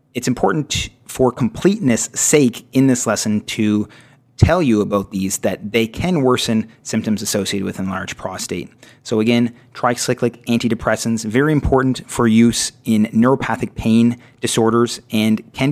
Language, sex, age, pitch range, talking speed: English, male, 30-49, 110-130 Hz, 135 wpm